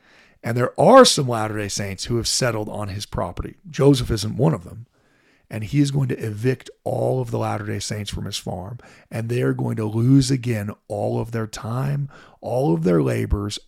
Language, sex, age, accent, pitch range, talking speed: English, male, 40-59, American, 105-140 Hz, 200 wpm